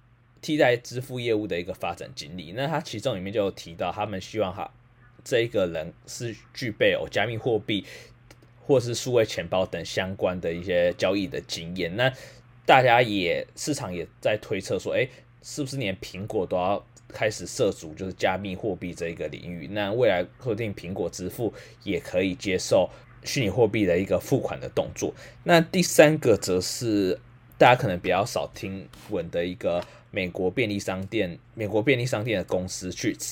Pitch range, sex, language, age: 95-125 Hz, male, Chinese, 20-39